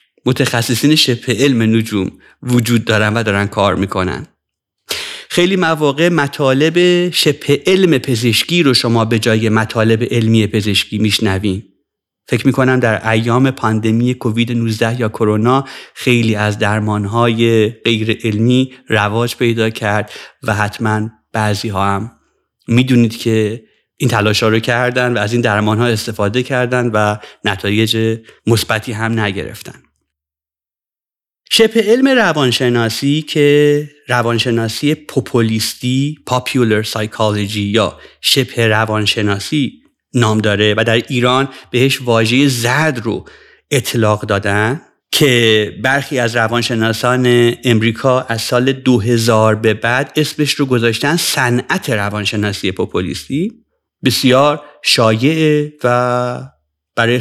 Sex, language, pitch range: male, Persian, 110-130 Hz